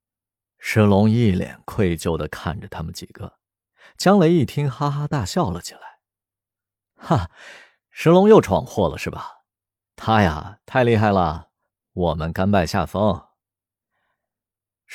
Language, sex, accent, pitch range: Chinese, male, native, 95-130 Hz